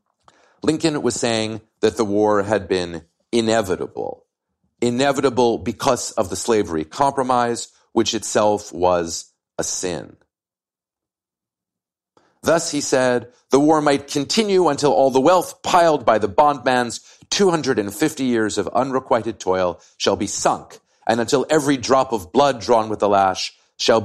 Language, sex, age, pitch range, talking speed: English, male, 40-59, 95-125 Hz, 135 wpm